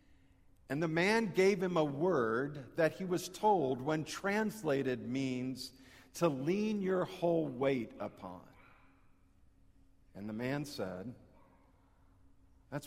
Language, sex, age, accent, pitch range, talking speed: English, male, 50-69, American, 95-160 Hz, 115 wpm